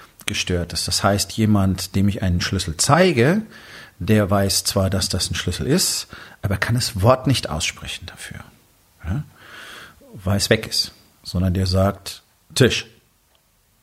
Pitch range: 95-120 Hz